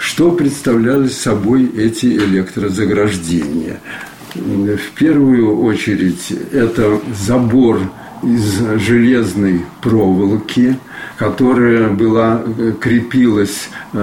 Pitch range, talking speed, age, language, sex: 100-125 Hz, 65 wpm, 50-69, Russian, male